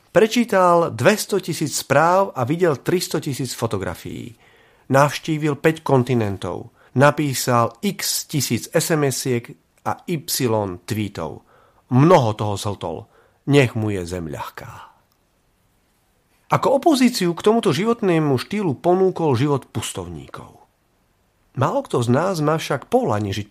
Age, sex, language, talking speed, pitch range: 40-59, male, Slovak, 110 wpm, 115-165 Hz